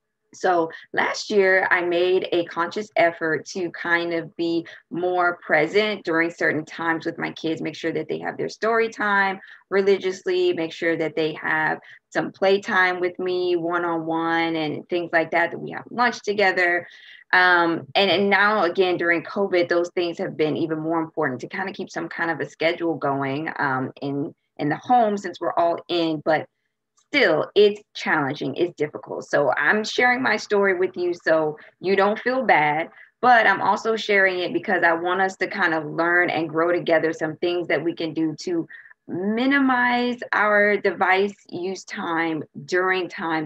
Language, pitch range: English, 165-200 Hz